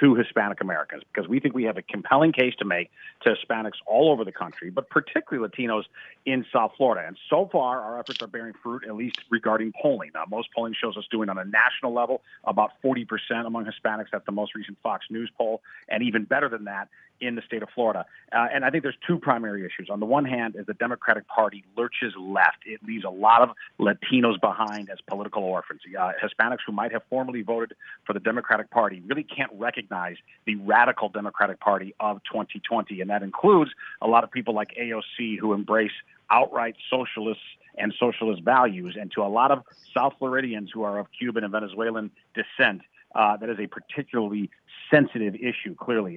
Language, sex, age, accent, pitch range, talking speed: English, male, 40-59, American, 105-120 Hz, 200 wpm